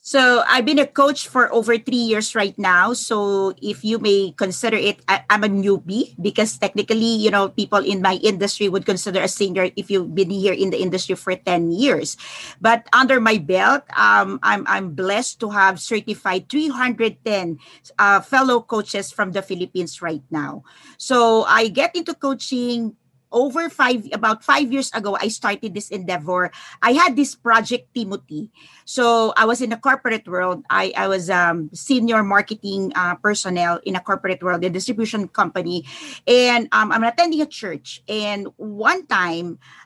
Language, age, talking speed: English, 40-59, 170 wpm